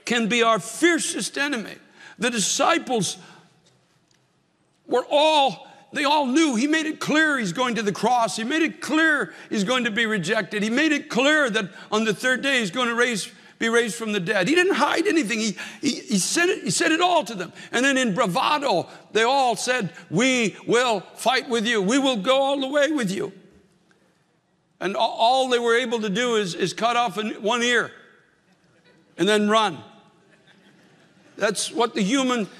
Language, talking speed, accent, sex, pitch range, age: English, 190 wpm, American, male, 195-245 Hz, 60-79